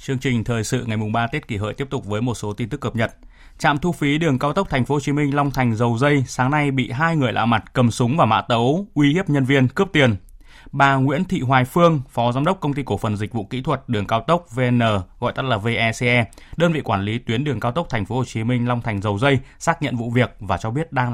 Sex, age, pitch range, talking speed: male, 20-39, 115-145 Hz, 285 wpm